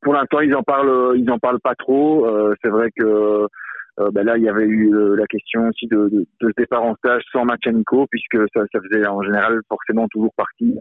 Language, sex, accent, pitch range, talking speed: French, male, French, 95-115 Hz, 230 wpm